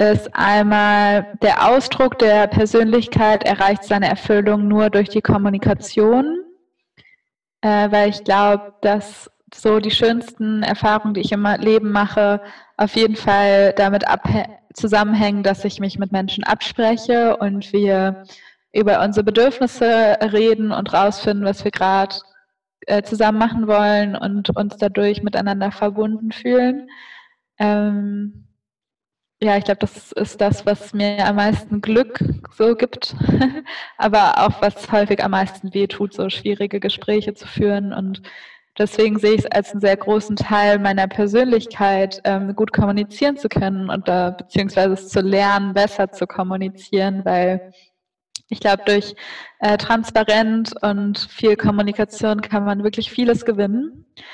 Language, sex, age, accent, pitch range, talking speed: German, female, 20-39, German, 200-220 Hz, 140 wpm